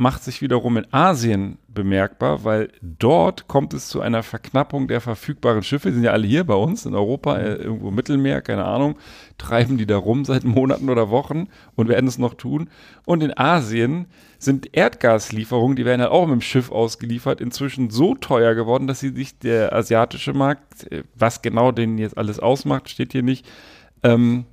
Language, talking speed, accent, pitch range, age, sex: German, 185 wpm, German, 110-130 Hz, 40-59, male